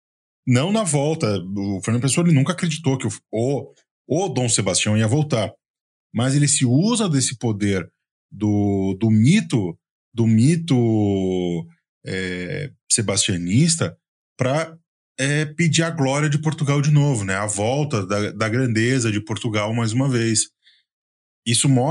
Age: 20-39